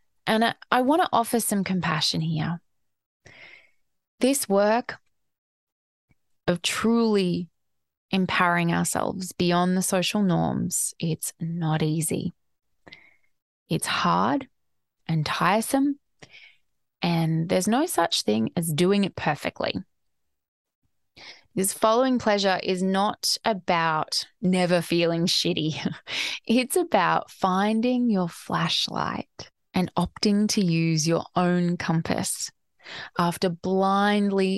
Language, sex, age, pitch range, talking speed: English, female, 20-39, 165-210 Hz, 100 wpm